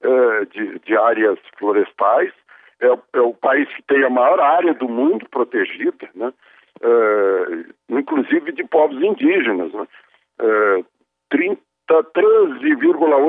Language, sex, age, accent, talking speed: Portuguese, male, 60-79, Brazilian, 105 wpm